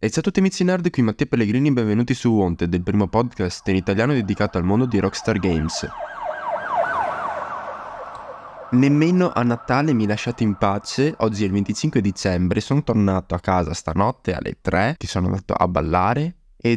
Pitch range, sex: 95-120 Hz, male